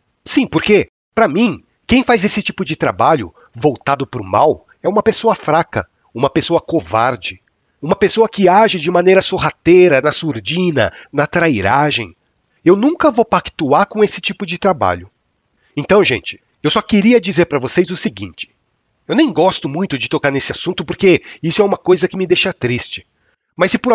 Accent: Brazilian